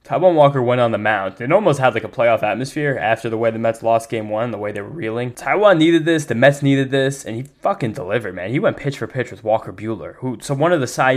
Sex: male